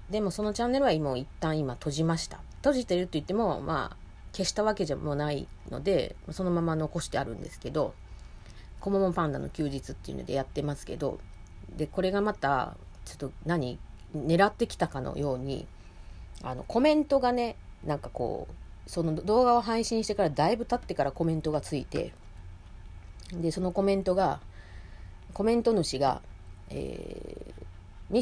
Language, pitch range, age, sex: Japanese, 125-185 Hz, 30-49, female